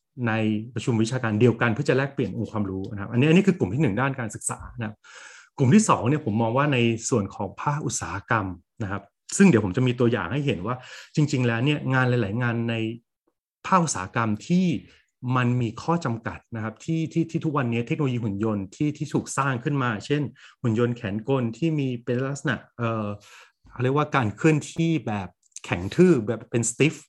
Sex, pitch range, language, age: male, 110-135 Hz, English, 30-49